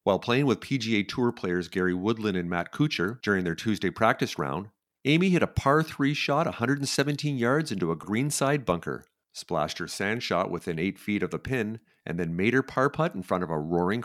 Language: English